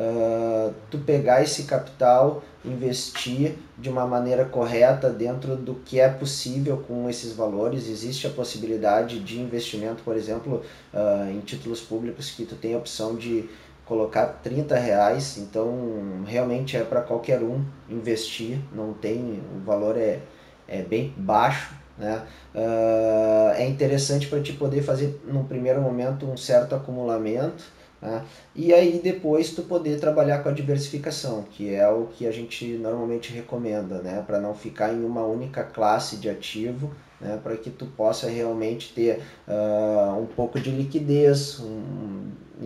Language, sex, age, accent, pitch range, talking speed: Portuguese, male, 20-39, Brazilian, 110-130 Hz, 150 wpm